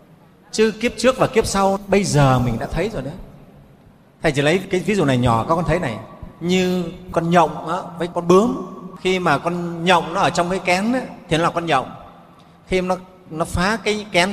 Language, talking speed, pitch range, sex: Vietnamese, 220 wpm, 160-195 Hz, male